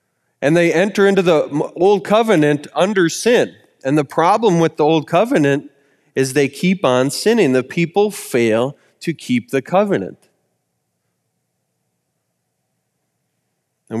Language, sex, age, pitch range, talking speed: English, male, 30-49, 145-205 Hz, 125 wpm